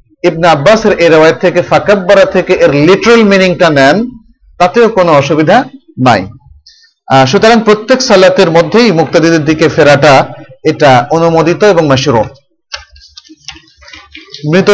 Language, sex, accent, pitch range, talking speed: Bengali, male, native, 145-190 Hz, 65 wpm